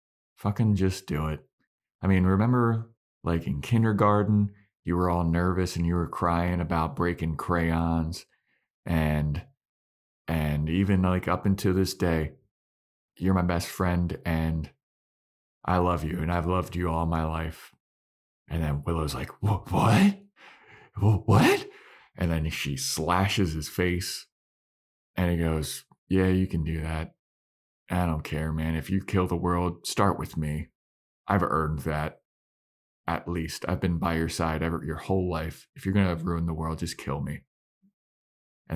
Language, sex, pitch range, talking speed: English, male, 80-95 Hz, 155 wpm